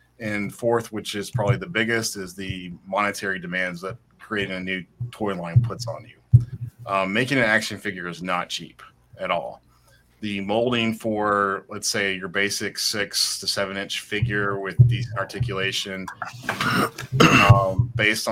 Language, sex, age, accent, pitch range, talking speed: English, male, 30-49, American, 95-115 Hz, 155 wpm